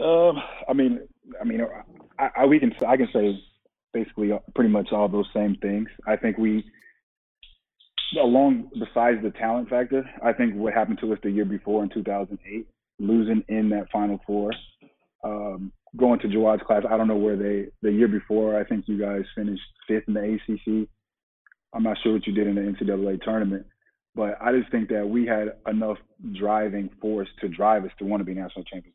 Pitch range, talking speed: 100-110 Hz, 200 wpm